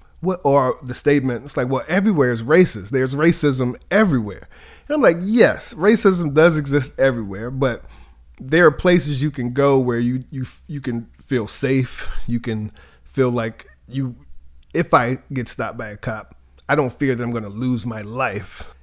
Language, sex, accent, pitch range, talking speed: English, male, American, 120-150 Hz, 180 wpm